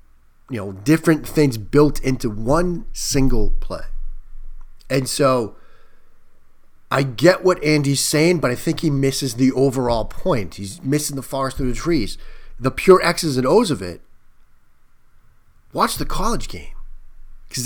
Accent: American